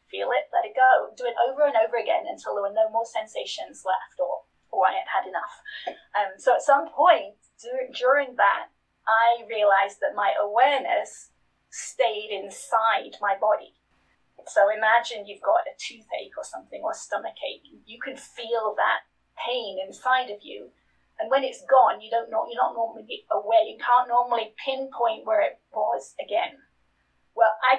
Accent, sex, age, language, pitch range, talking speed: British, female, 30-49, English, 220-330 Hz, 165 wpm